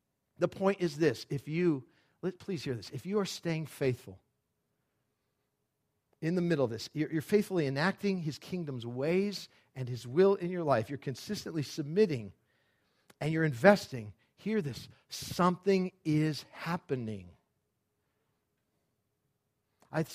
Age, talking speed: 50-69, 135 wpm